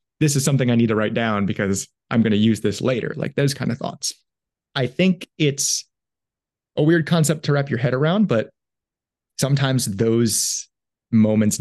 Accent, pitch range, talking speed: American, 100-135 Hz, 180 wpm